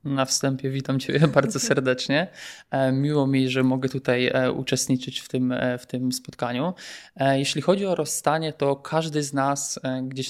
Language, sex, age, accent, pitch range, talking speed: Polish, male, 20-39, native, 130-150 Hz, 145 wpm